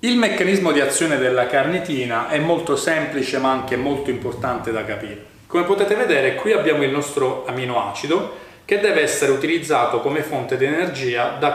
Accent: native